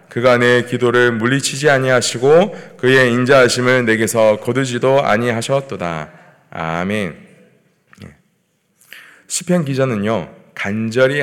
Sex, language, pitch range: male, Korean, 120-170 Hz